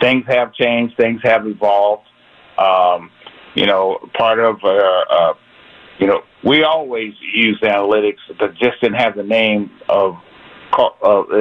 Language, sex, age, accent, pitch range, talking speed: English, male, 50-69, American, 105-120 Hz, 135 wpm